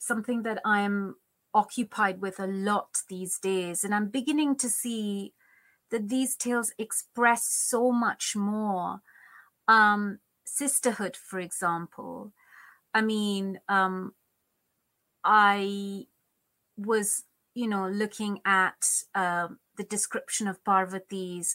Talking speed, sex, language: 110 wpm, female, English